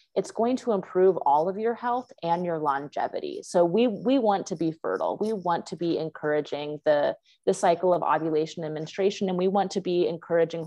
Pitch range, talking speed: 160-205 Hz, 200 wpm